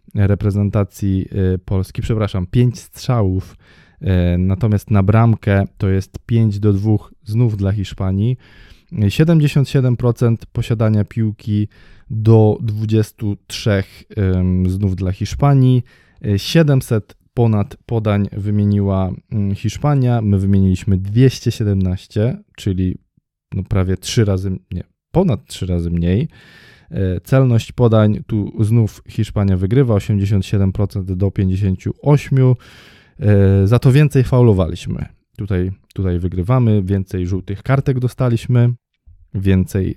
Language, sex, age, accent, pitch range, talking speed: Polish, male, 20-39, native, 95-120 Hz, 95 wpm